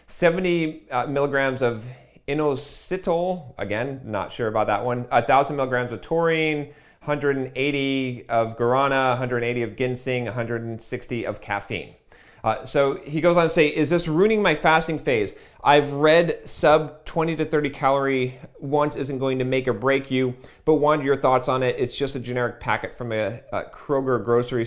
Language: English